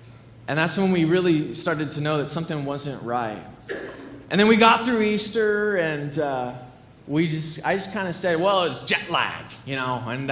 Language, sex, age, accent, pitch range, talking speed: English, male, 20-39, American, 150-190 Hz, 200 wpm